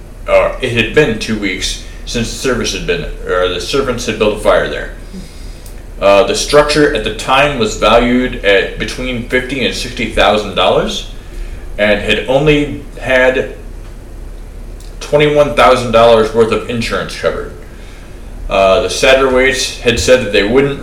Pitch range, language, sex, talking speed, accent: 100-130 Hz, English, male, 140 wpm, American